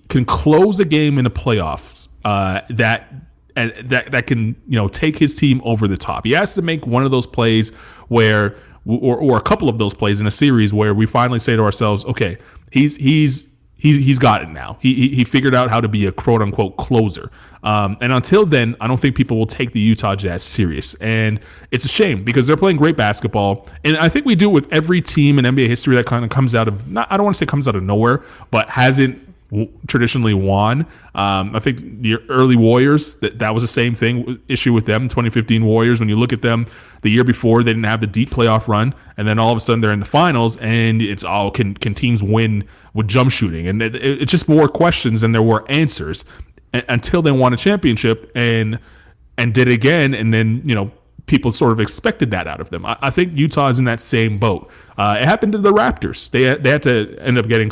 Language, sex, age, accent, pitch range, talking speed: English, male, 30-49, American, 105-135 Hz, 235 wpm